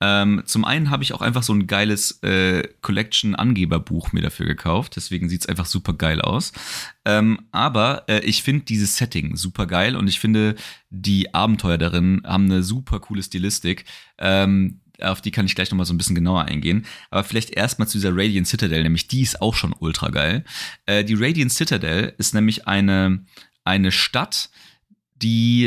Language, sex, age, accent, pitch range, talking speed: German, male, 30-49, German, 95-120 Hz, 185 wpm